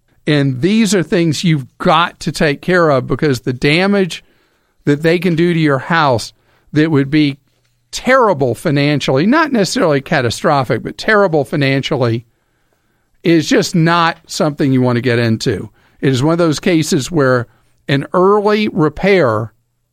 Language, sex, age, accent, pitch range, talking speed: English, male, 50-69, American, 130-170 Hz, 150 wpm